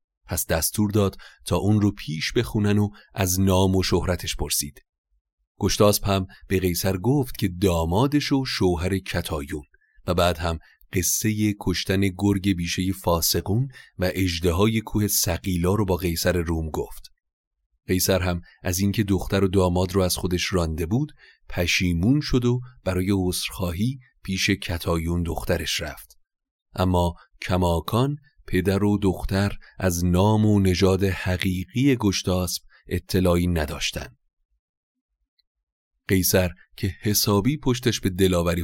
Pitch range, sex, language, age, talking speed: 85-100 Hz, male, Persian, 30-49, 125 wpm